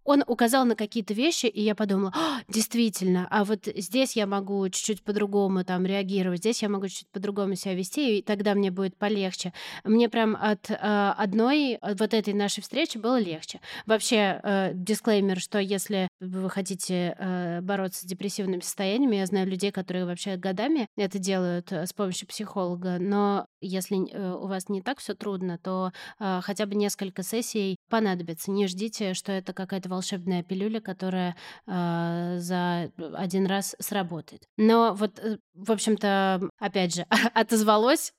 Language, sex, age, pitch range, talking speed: Russian, female, 20-39, 185-215 Hz, 160 wpm